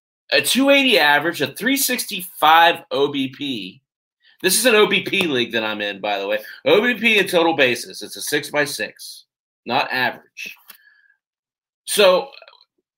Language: English